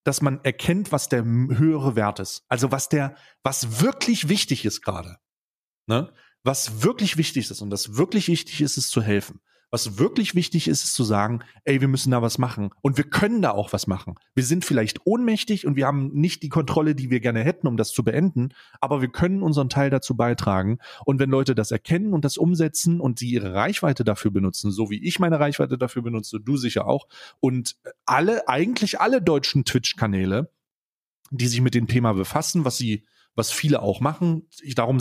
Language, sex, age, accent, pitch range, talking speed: German, male, 30-49, German, 115-150 Hz, 200 wpm